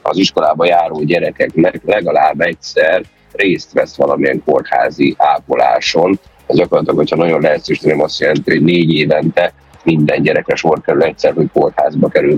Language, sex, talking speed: Hungarian, male, 135 wpm